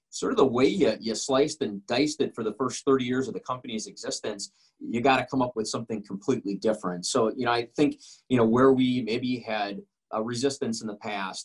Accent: American